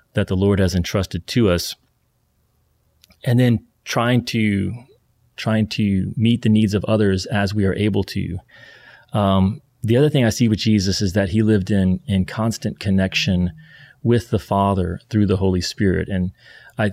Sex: male